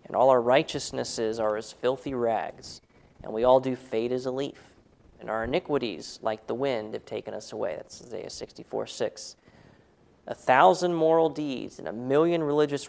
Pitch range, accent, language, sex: 115-160 Hz, American, English, male